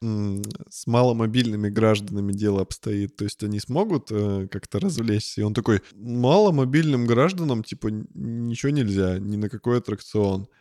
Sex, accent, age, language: male, native, 20-39, Russian